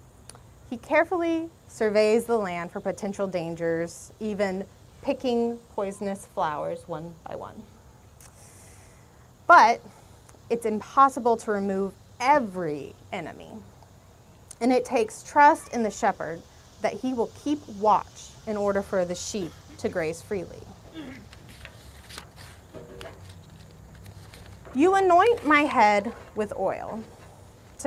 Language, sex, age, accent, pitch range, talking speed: English, female, 30-49, American, 165-230 Hz, 105 wpm